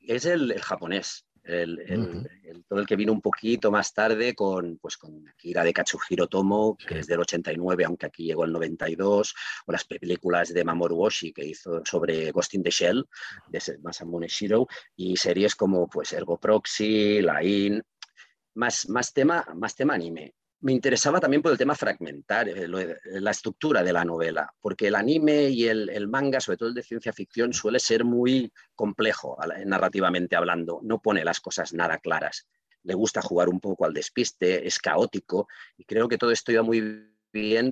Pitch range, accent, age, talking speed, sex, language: 85-115 Hz, Spanish, 40-59, 185 wpm, male, Spanish